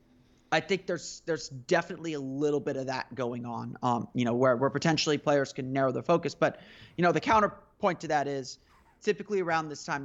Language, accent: English, American